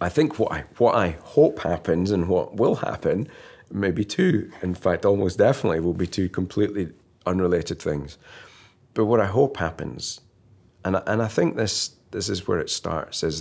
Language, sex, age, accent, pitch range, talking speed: English, male, 40-59, British, 80-100 Hz, 185 wpm